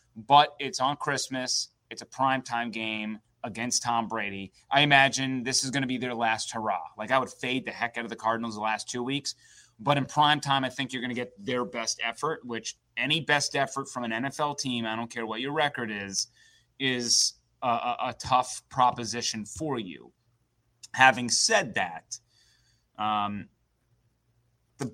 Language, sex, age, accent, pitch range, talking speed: English, male, 30-49, American, 115-130 Hz, 180 wpm